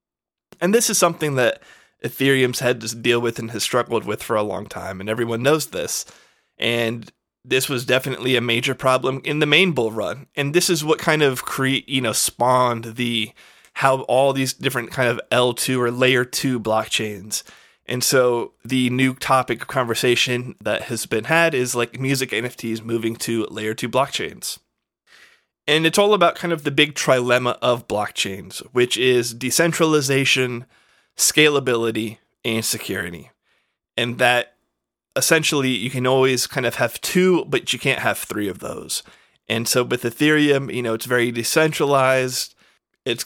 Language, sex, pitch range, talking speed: English, male, 120-140 Hz, 165 wpm